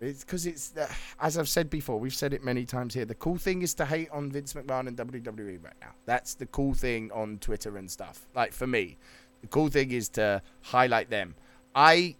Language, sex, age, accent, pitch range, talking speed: English, male, 20-39, British, 120-155 Hz, 225 wpm